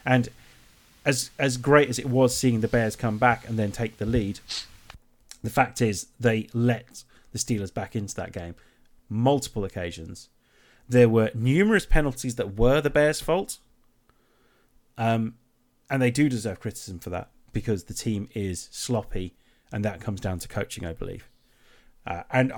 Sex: male